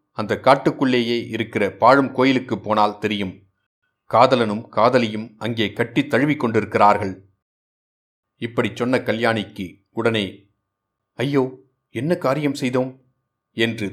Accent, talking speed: native, 90 wpm